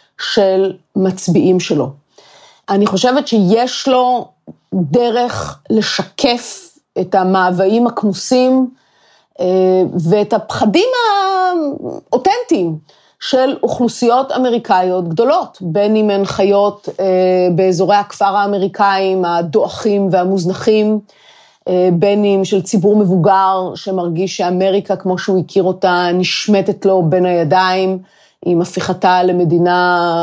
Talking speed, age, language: 90 wpm, 30-49, Hebrew